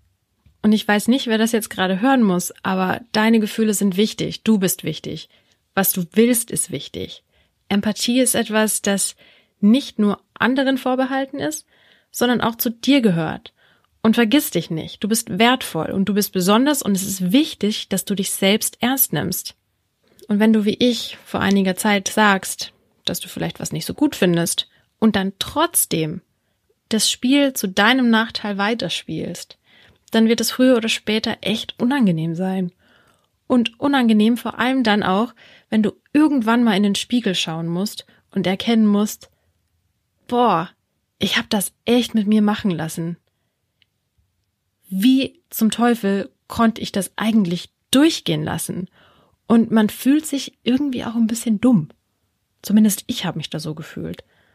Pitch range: 185-235 Hz